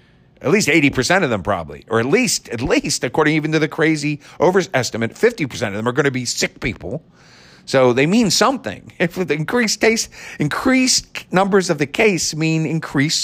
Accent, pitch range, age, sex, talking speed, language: American, 120-175 Hz, 50-69, male, 180 wpm, English